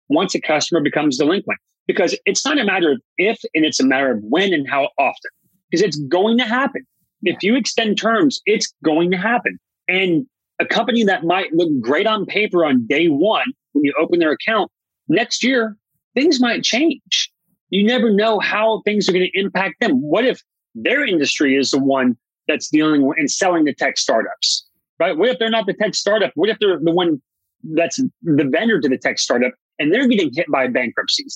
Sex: male